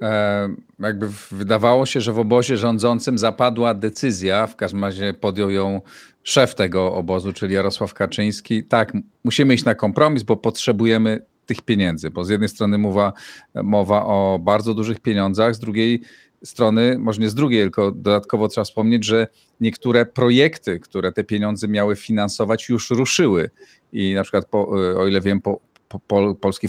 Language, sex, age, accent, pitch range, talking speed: Polish, male, 40-59, native, 100-125 Hz, 155 wpm